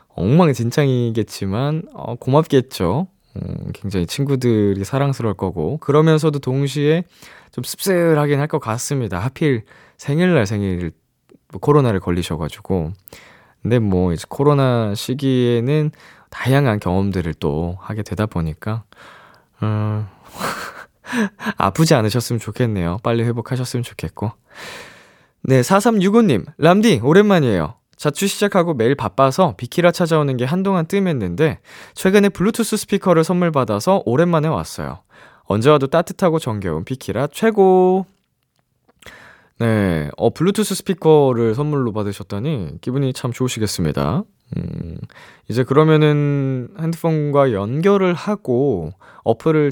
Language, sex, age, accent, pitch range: Korean, male, 20-39, native, 105-160 Hz